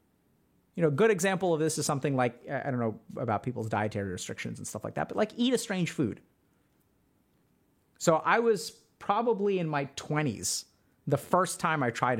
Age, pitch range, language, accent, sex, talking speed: 30-49, 155-220 Hz, English, American, male, 190 wpm